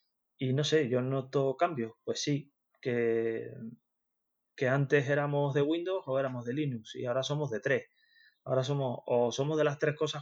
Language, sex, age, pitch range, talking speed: Spanish, male, 30-49, 125-145 Hz, 180 wpm